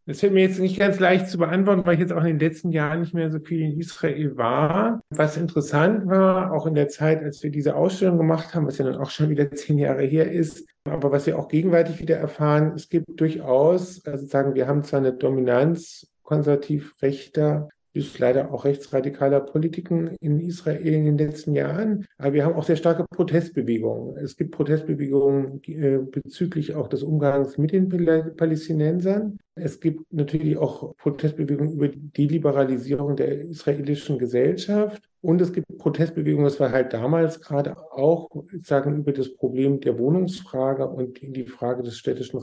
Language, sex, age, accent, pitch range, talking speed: German, male, 50-69, German, 140-165 Hz, 175 wpm